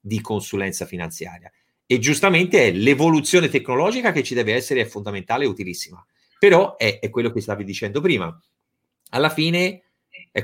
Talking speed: 155 wpm